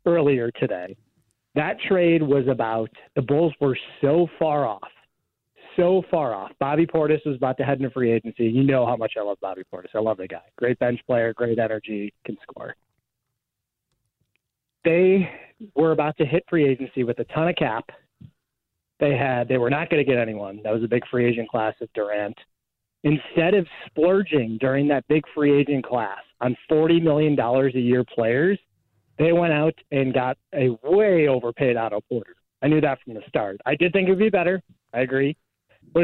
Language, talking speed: English, 190 wpm